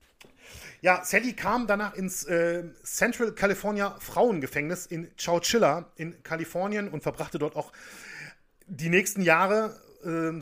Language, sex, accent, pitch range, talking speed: German, male, German, 155-190 Hz, 120 wpm